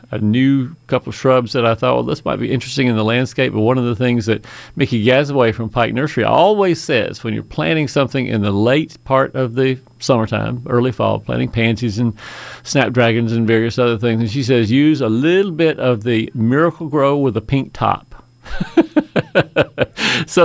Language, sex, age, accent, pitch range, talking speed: English, male, 50-69, American, 110-140 Hz, 195 wpm